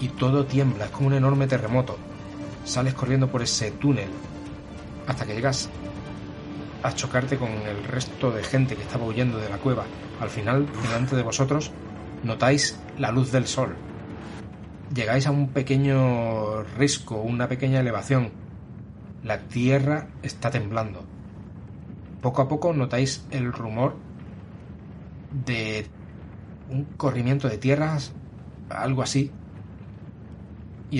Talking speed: 125 wpm